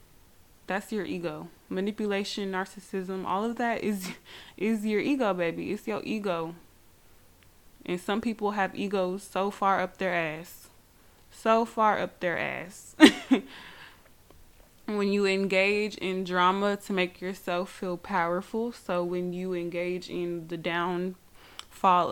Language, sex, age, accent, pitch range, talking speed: English, female, 20-39, American, 170-205 Hz, 130 wpm